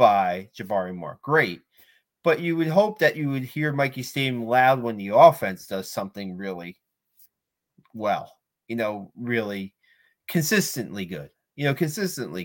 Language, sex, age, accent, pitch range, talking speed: English, male, 30-49, American, 105-125 Hz, 145 wpm